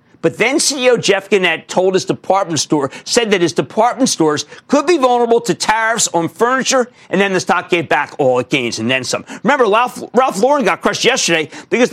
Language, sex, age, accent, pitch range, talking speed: English, male, 50-69, American, 165-240 Hz, 200 wpm